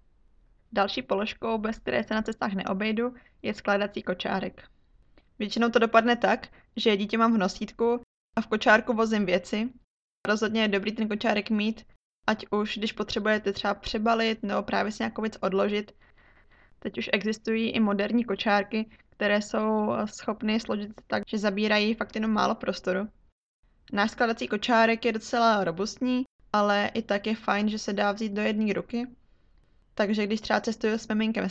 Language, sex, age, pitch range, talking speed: Czech, female, 20-39, 205-225 Hz, 160 wpm